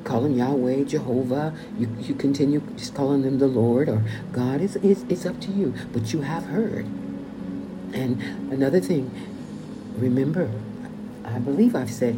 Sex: female